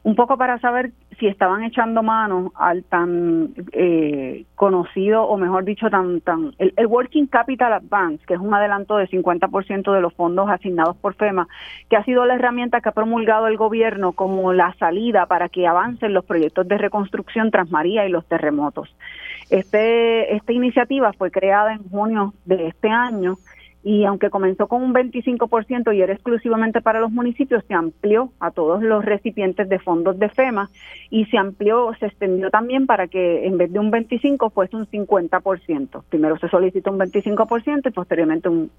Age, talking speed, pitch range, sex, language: 30-49, 180 wpm, 185-230 Hz, female, Spanish